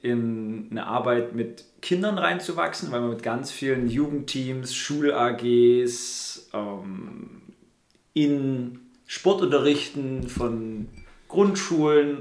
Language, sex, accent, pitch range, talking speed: German, male, German, 115-130 Hz, 90 wpm